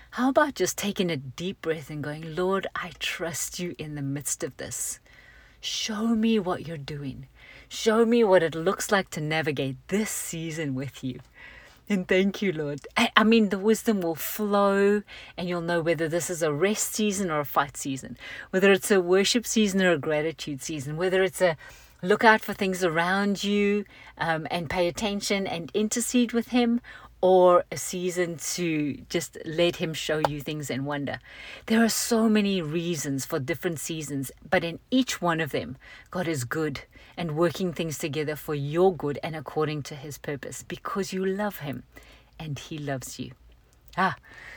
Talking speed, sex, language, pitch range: 180 wpm, female, English, 155-200 Hz